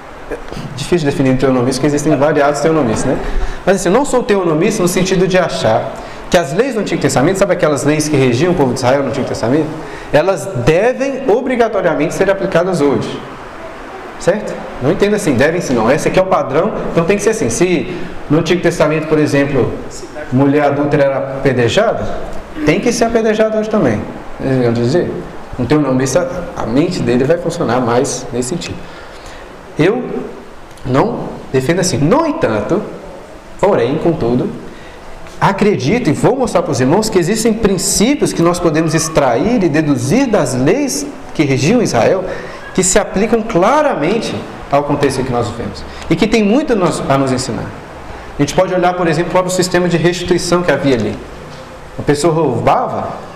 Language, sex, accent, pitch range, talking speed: Portuguese, male, Brazilian, 140-190 Hz, 170 wpm